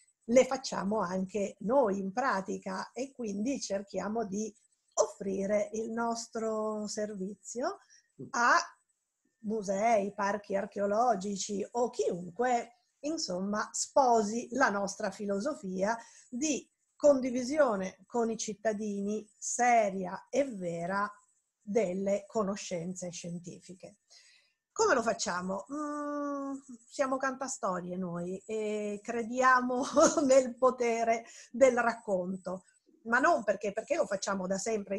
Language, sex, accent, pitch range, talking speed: Italian, female, native, 195-255 Hz, 100 wpm